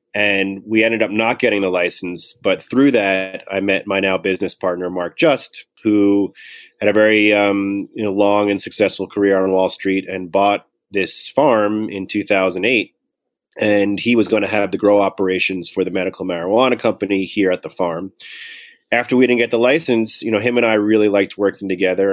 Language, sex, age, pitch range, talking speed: English, male, 30-49, 95-105 Hz, 195 wpm